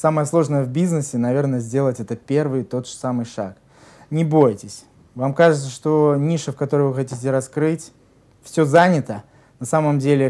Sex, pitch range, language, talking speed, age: male, 120-145 Hz, Russian, 165 wpm, 20-39